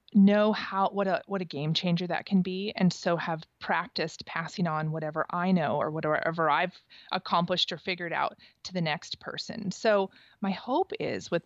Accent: American